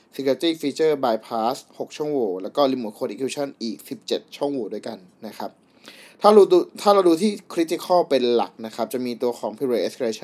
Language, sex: Thai, male